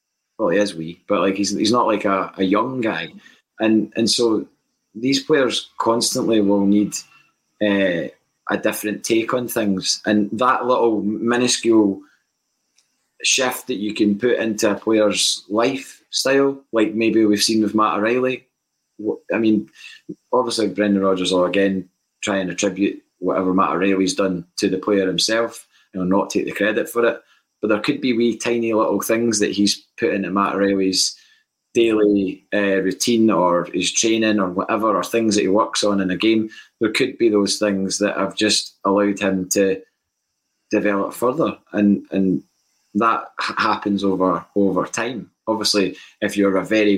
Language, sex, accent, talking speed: English, male, British, 165 wpm